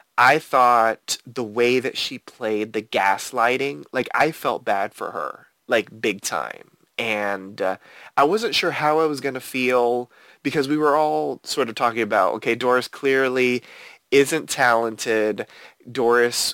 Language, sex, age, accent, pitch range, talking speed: English, male, 20-39, American, 115-140 Hz, 155 wpm